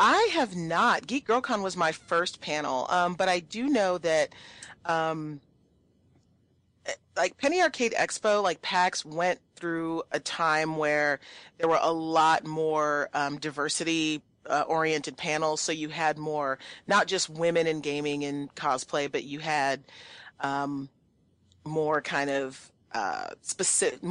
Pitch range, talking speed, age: 150-185 Hz, 140 wpm, 30-49